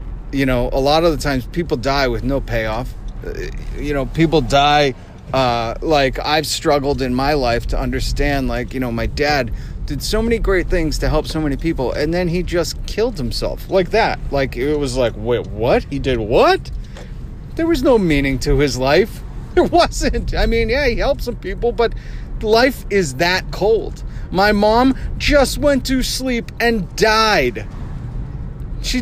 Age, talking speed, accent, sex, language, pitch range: 30-49, 180 wpm, American, male, English, 130-215 Hz